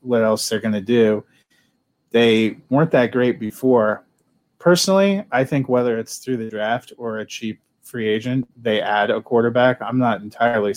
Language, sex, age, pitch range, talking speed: English, male, 30-49, 110-120 Hz, 175 wpm